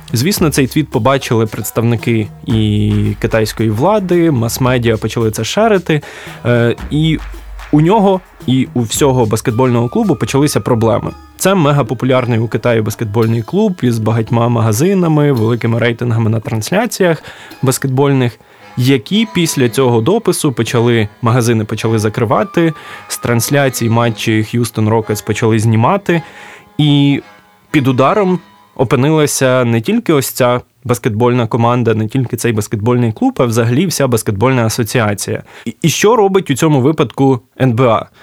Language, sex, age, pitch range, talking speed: Ukrainian, male, 20-39, 115-150 Hz, 120 wpm